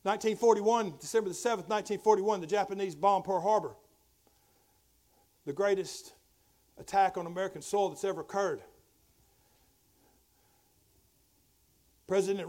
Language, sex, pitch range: English, male, 185-220 Hz